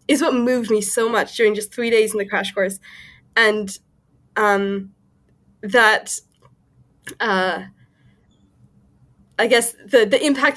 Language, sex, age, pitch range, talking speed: English, female, 10-29, 205-250 Hz, 130 wpm